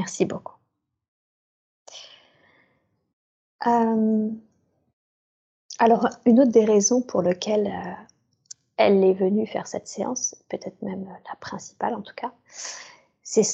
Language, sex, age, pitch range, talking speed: French, female, 30-49, 190-225 Hz, 110 wpm